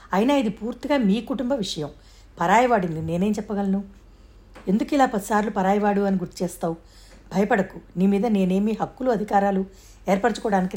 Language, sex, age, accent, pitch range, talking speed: Telugu, female, 60-79, native, 165-210 Hz, 135 wpm